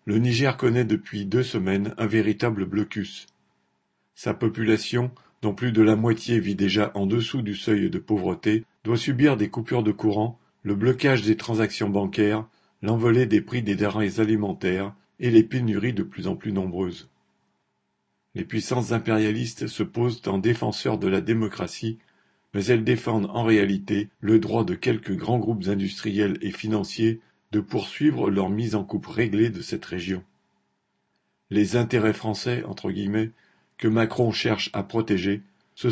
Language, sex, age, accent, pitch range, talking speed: French, male, 50-69, French, 100-115 Hz, 155 wpm